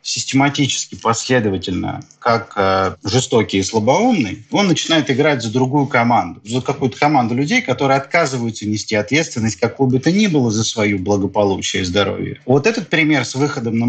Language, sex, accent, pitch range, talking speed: Russian, male, native, 110-155 Hz, 160 wpm